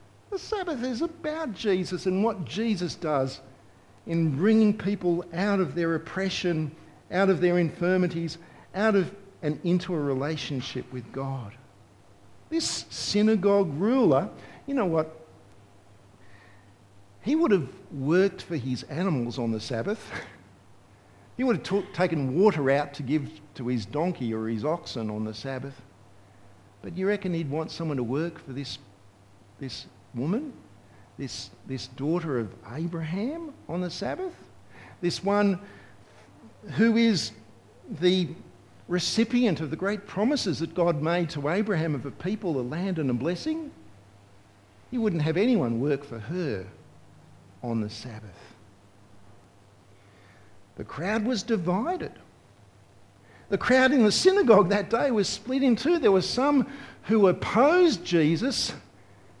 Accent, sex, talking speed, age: Australian, male, 135 wpm, 50-69